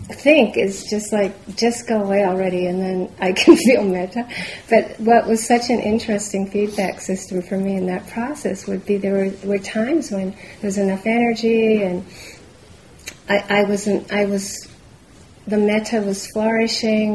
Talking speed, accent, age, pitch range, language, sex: 170 wpm, American, 40-59, 190-220 Hz, English, female